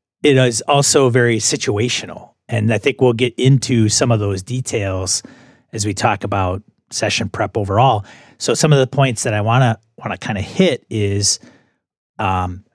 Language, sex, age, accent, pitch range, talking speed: English, male, 40-59, American, 105-130 Hz, 180 wpm